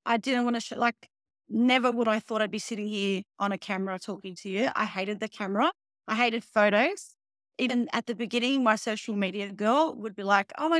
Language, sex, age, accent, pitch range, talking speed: English, female, 30-49, Australian, 210-250 Hz, 220 wpm